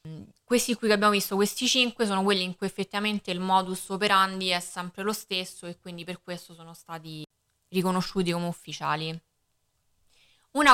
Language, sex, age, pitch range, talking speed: Italian, female, 20-39, 180-210 Hz, 160 wpm